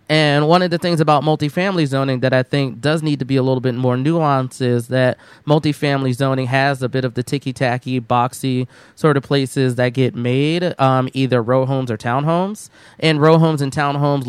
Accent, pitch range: American, 130-150 Hz